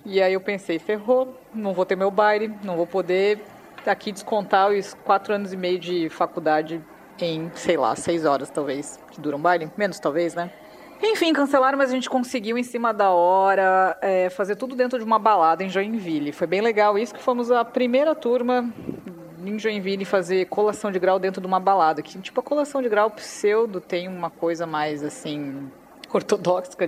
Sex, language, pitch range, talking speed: female, Portuguese, 175-235 Hz, 190 wpm